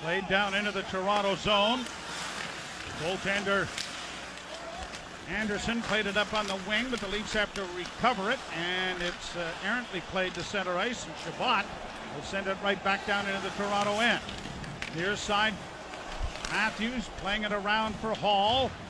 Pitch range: 195-245 Hz